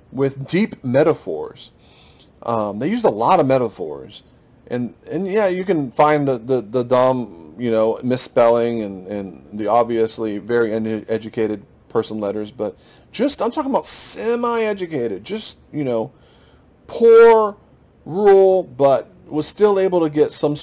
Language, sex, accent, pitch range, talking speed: English, male, American, 105-150 Hz, 145 wpm